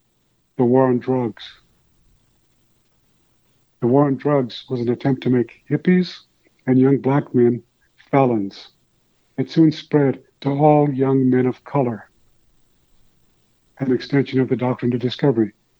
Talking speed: 135 wpm